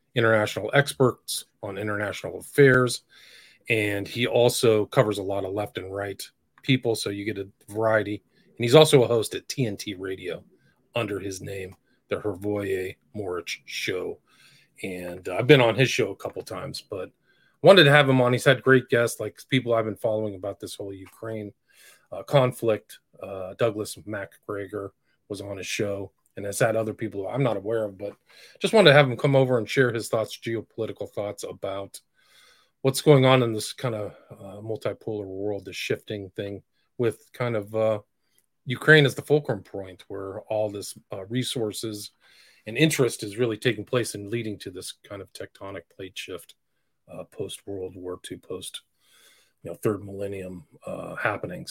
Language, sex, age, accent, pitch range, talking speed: English, male, 40-59, American, 100-125 Hz, 175 wpm